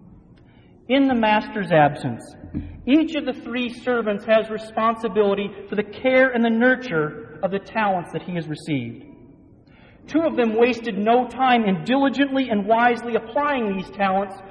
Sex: male